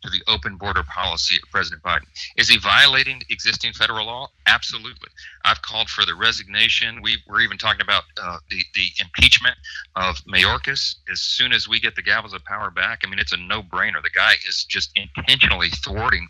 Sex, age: male, 40-59